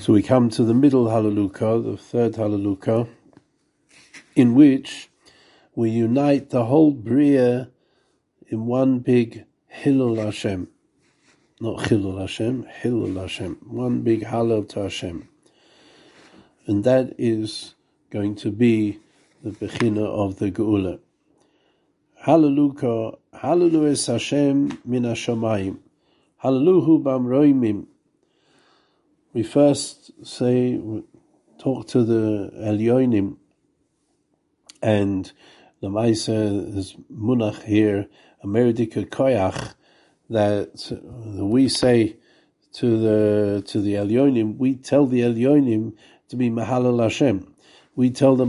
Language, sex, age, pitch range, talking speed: English, male, 60-79, 105-130 Hz, 100 wpm